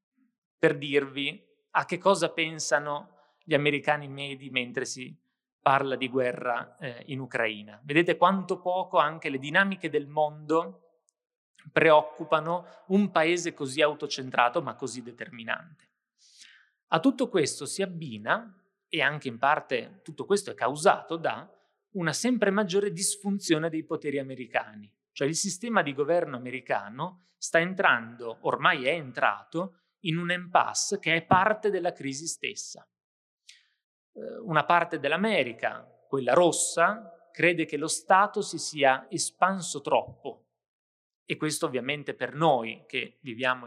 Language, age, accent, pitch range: Italian, 30-49, native, 140-180 Hz